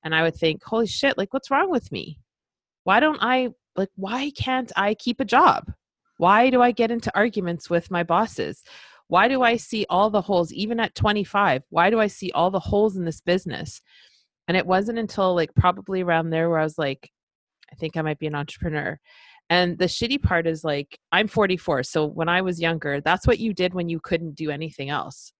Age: 30-49